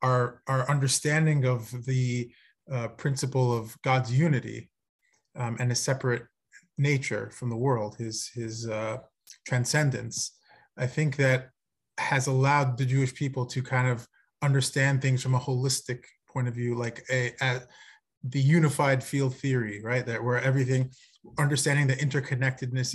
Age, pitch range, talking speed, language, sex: 30-49, 125-140 Hz, 145 wpm, English, male